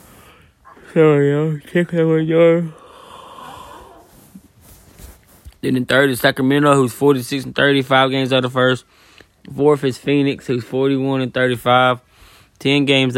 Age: 10-29